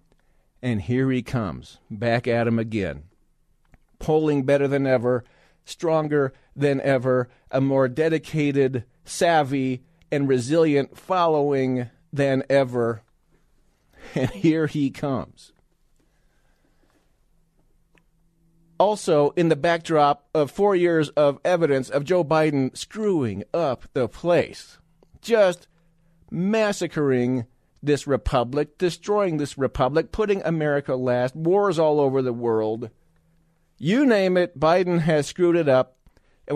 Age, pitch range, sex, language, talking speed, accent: 40-59, 130-165 Hz, male, English, 110 wpm, American